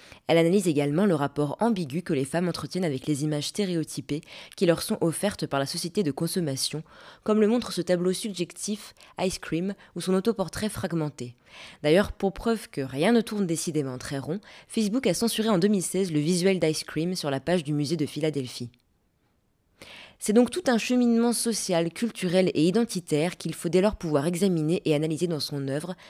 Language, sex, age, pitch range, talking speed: French, female, 20-39, 145-190 Hz, 185 wpm